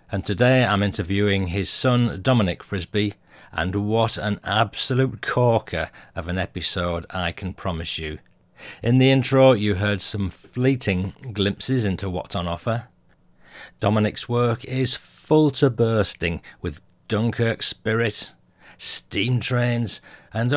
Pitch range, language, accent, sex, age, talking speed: 95-120 Hz, English, British, male, 40-59, 130 wpm